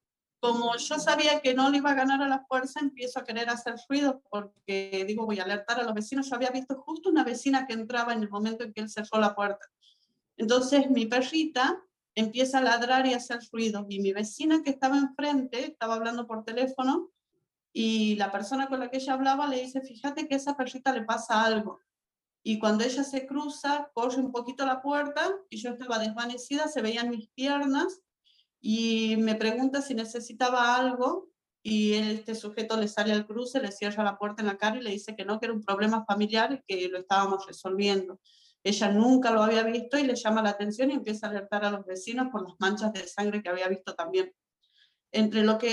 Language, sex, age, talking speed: English, female, 40-59, 215 wpm